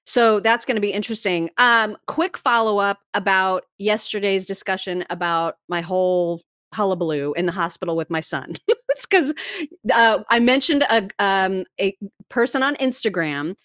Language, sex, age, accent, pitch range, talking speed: English, female, 30-49, American, 180-235 Hz, 135 wpm